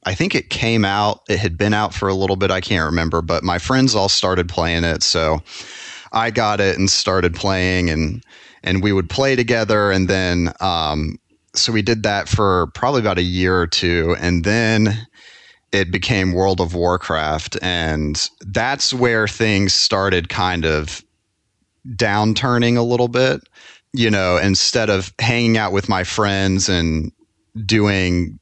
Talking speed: 165 wpm